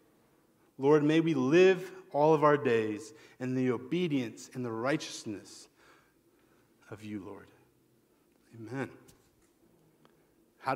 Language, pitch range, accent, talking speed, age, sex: English, 110-145 Hz, American, 105 wpm, 40-59, male